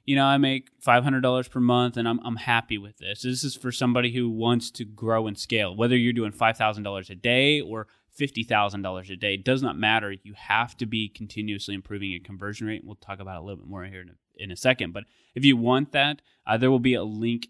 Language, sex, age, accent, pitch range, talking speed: English, male, 20-39, American, 100-125 Hz, 245 wpm